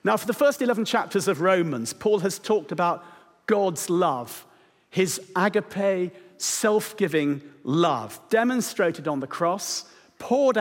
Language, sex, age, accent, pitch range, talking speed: English, male, 50-69, British, 160-215 Hz, 130 wpm